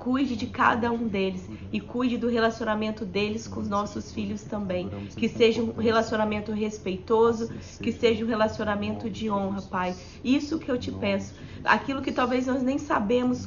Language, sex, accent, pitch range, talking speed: Portuguese, female, Brazilian, 215-245 Hz, 170 wpm